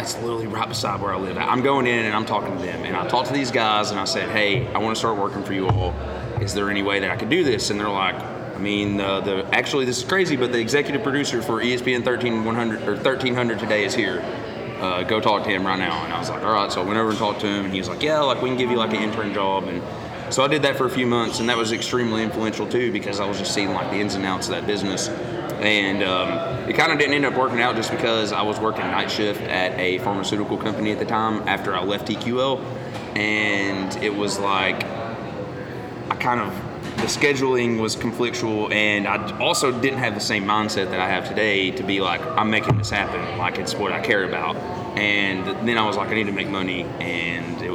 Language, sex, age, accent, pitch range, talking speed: English, male, 30-49, American, 100-120 Hz, 255 wpm